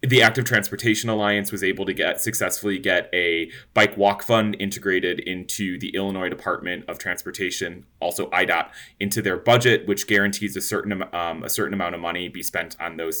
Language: English